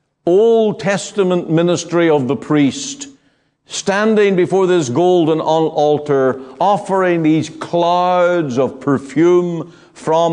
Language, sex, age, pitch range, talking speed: English, male, 50-69, 125-180 Hz, 100 wpm